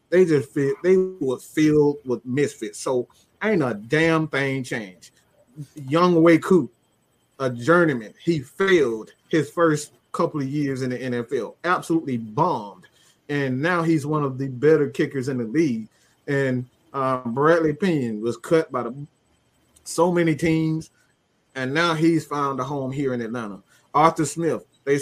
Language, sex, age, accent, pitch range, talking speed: English, male, 30-49, American, 135-165 Hz, 155 wpm